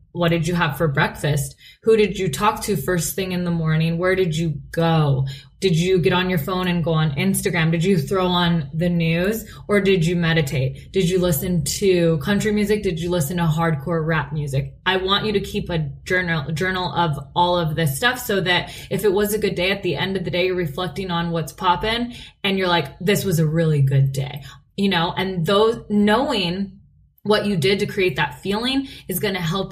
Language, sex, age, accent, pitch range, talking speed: English, female, 10-29, American, 170-205 Hz, 220 wpm